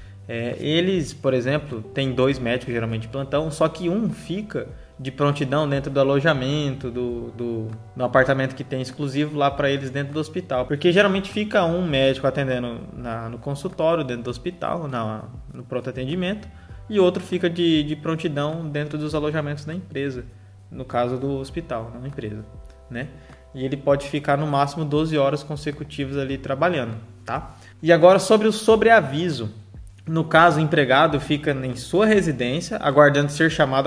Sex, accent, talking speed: male, Brazilian, 170 wpm